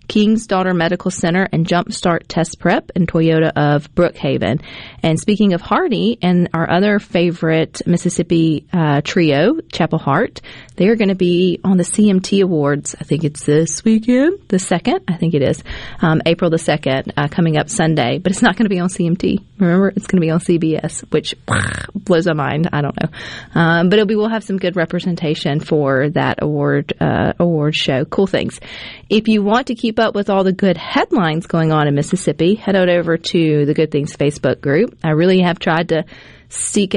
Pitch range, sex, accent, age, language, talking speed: 155-190 Hz, female, American, 30-49, English, 200 wpm